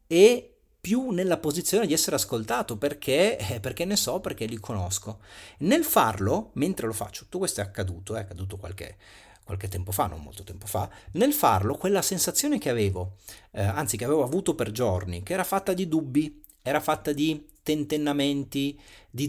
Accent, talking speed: native, 175 wpm